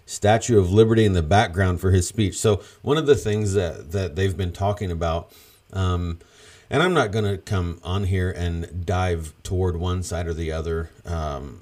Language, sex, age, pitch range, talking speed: English, male, 40-59, 85-100 Hz, 195 wpm